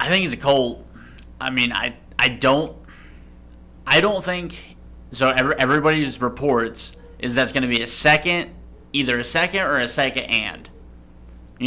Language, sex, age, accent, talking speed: English, male, 30-49, American, 165 wpm